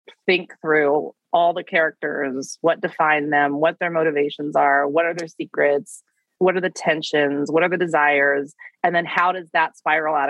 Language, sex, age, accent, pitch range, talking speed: English, female, 30-49, American, 150-190 Hz, 180 wpm